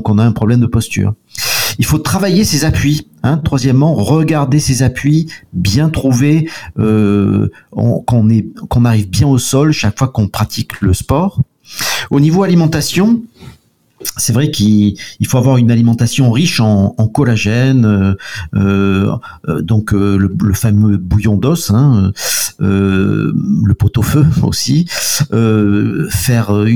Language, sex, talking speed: French, male, 140 wpm